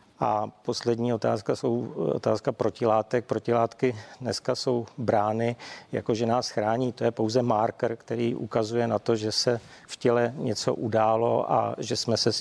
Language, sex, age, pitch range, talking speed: Czech, male, 40-59, 110-120 Hz, 155 wpm